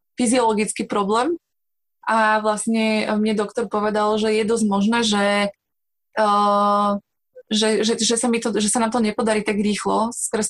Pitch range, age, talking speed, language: 210-235 Hz, 20-39, 135 wpm, Slovak